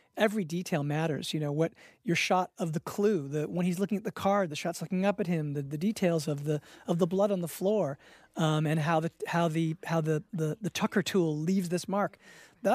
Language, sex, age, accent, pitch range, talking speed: English, male, 40-59, American, 155-195 Hz, 240 wpm